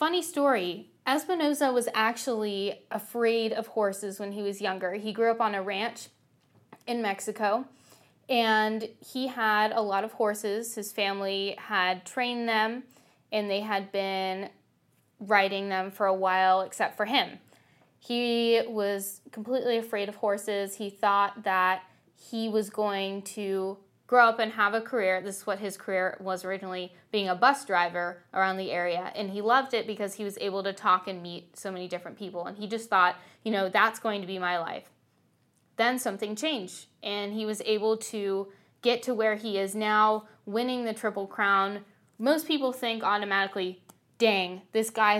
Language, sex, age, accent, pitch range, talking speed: English, female, 10-29, American, 195-225 Hz, 175 wpm